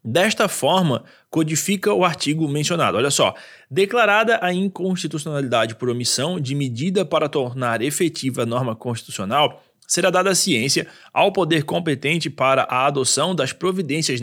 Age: 20-39